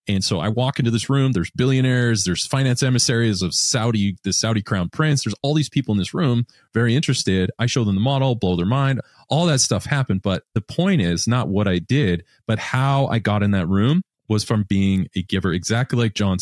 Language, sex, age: English, male, 30-49